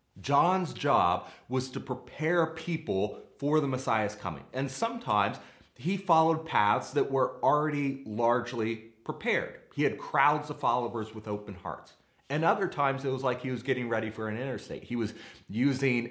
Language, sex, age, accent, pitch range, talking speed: English, male, 30-49, American, 110-145 Hz, 165 wpm